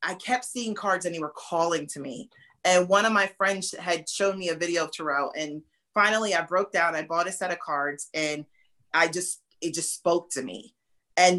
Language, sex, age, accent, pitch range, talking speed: English, female, 30-49, American, 165-210 Hz, 220 wpm